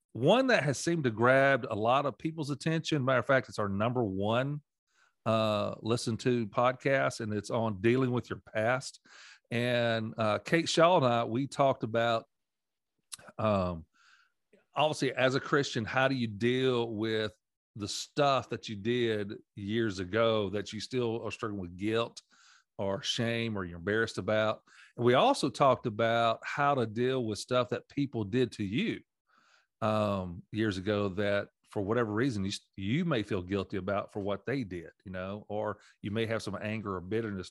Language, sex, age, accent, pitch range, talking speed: English, male, 40-59, American, 105-125 Hz, 175 wpm